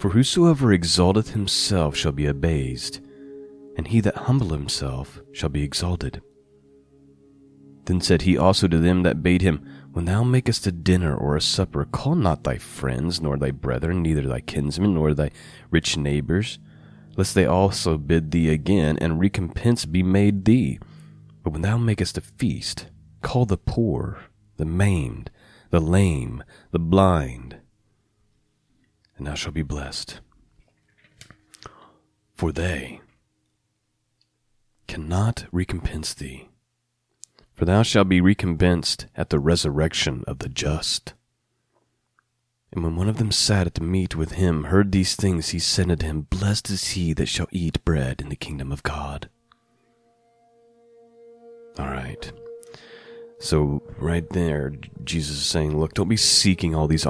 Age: 30-49